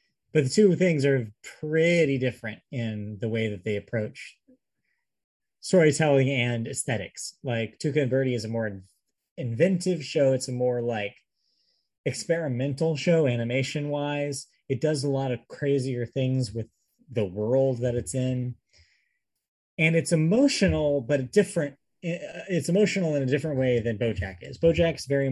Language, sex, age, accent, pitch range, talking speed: English, male, 30-49, American, 110-145 Hz, 145 wpm